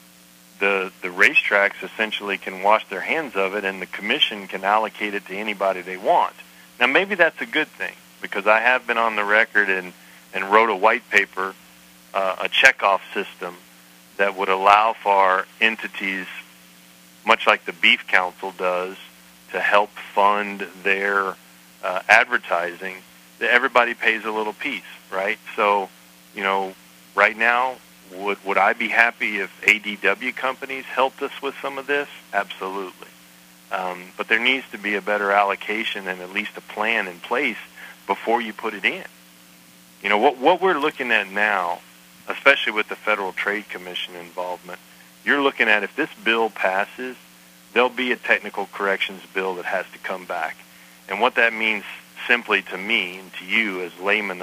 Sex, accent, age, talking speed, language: male, American, 40-59, 170 wpm, English